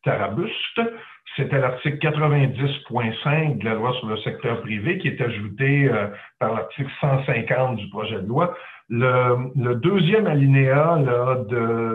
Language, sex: French, male